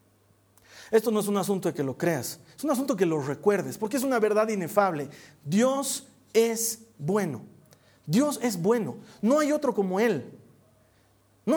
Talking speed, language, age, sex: 165 wpm, Spanish, 40-59, male